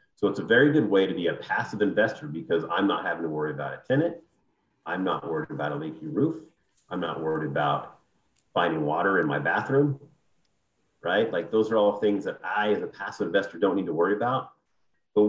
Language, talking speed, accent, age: English, 210 wpm, American, 40-59